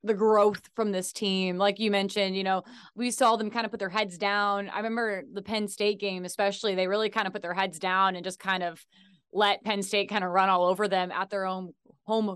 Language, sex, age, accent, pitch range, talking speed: English, female, 20-39, American, 190-220 Hz, 250 wpm